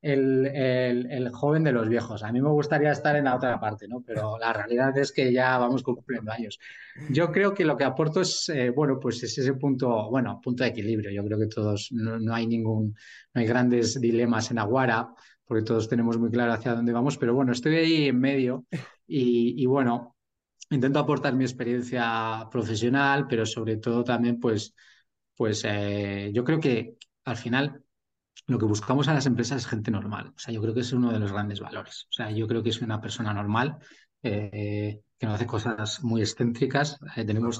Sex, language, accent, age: male, Spanish, Spanish, 20-39